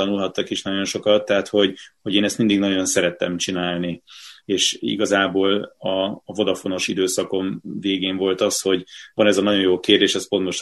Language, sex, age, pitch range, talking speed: Hungarian, male, 30-49, 90-100 Hz, 175 wpm